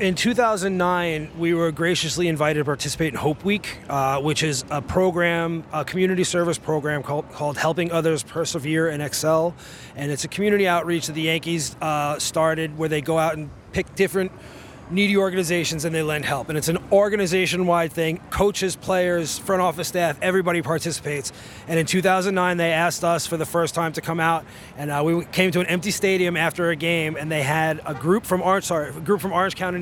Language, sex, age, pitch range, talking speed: English, male, 30-49, 160-185 Hz, 190 wpm